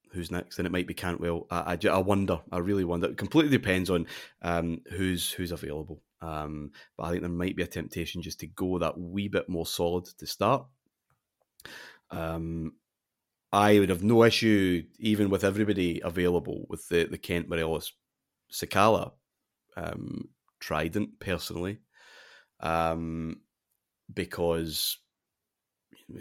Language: English